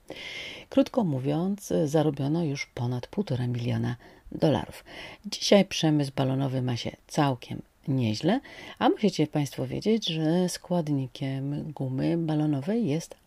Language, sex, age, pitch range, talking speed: Polish, female, 40-59, 130-175 Hz, 110 wpm